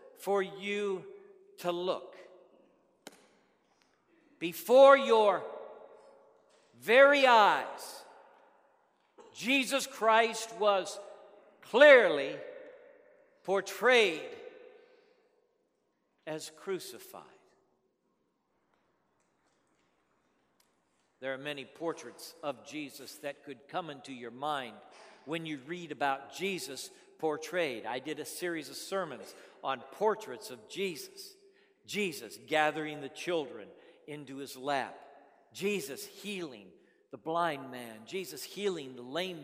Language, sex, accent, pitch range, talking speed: English, male, American, 165-270 Hz, 90 wpm